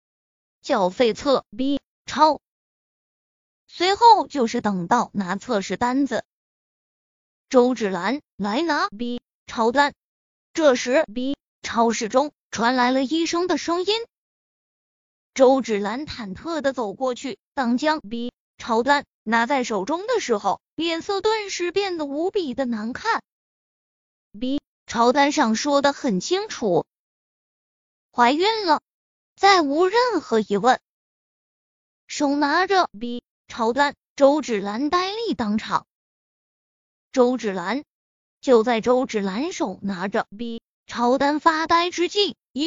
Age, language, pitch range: 20-39, Chinese, 235-320 Hz